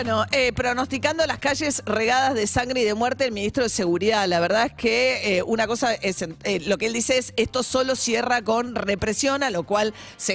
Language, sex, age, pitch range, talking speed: Spanish, female, 40-59, 190-245 Hz, 220 wpm